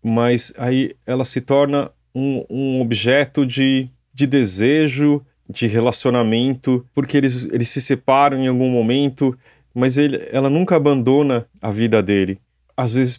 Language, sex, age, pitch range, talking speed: Portuguese, male, 20-39, 110-140 Hz, 140 wpm